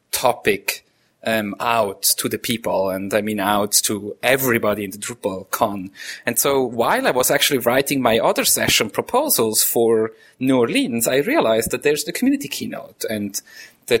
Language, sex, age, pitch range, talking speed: English, male, 30-49, 115-175 Hz, 165 wpm